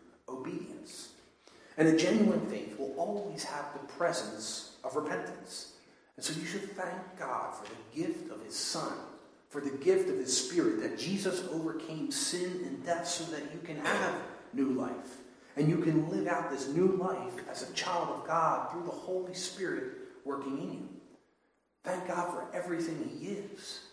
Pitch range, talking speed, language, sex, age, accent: 155-210 Hz, 175 wpm, English, male, 40-59, American